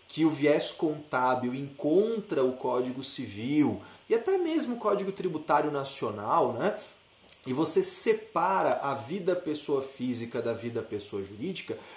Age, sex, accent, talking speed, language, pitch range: 30-49, male, Brazilian, 135 wpm, Portuguese, 130-210 Hz